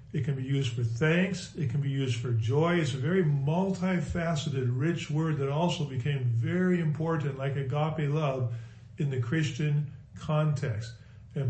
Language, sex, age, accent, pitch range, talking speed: English, male, 50-69, American, 125-155 Hz, 160 wpm